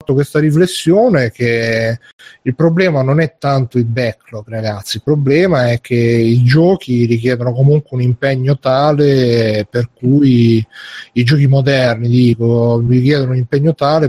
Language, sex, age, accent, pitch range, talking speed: Italian, male, 30-49, native, 120-145 Hz, 135 wpm